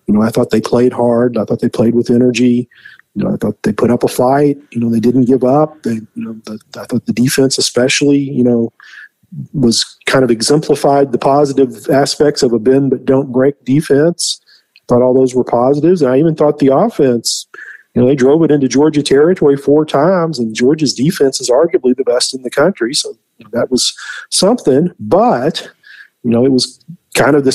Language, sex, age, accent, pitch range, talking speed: English, male, 40-59, American, 120-145 Hz, 210 wpm